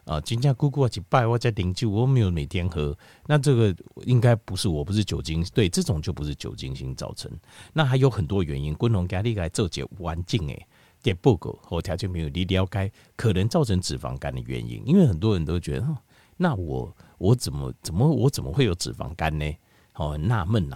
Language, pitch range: Chinese, 85-130 Hz